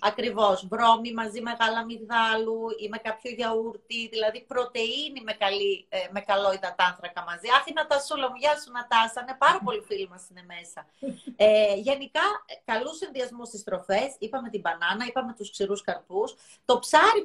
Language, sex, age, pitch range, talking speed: Greek, female, 30-49, 205-260 Hz, 155 wpm